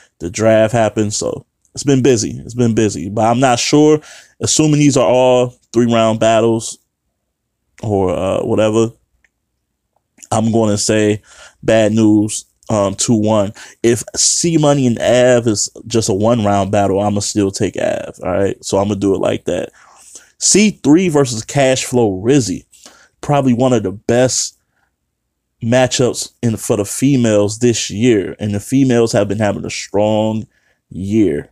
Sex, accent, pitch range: male, American, 100-120 Hz